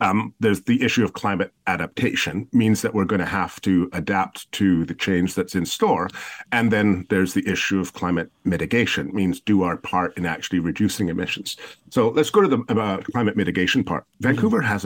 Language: English